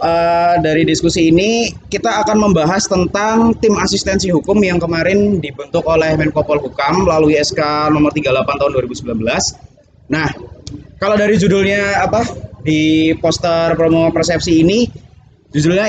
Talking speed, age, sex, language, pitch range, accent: 130 wpm, 20-39, male, Indonesian, 155-195 Hz, native